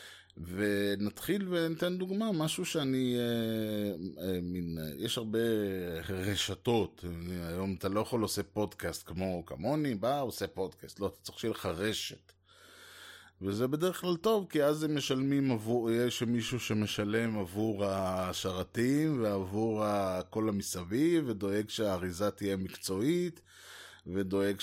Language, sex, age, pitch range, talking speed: Hebrew, male, 20-39, 95-130 Hz, 125 wpm